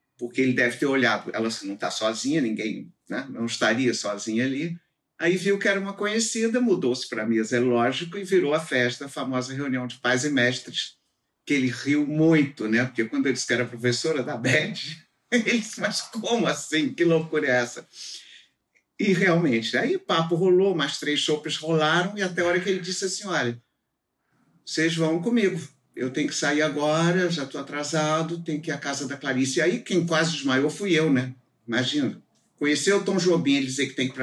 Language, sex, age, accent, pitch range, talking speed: Portuguese, male, 50-69, Brazilian, 125-175 Hz, 205 wpm